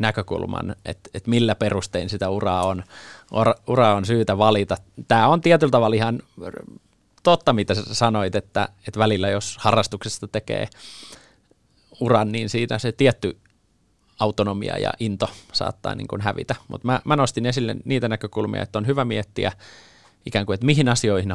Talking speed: 155 wpm